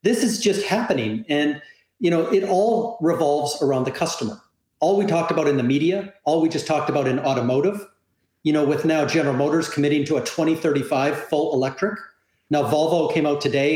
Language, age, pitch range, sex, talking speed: English, 40-59, 140-175 Hz, male, 190 wpm